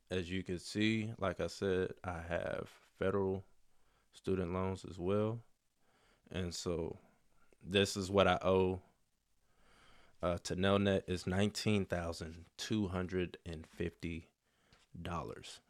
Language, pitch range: English, 90-100 Hz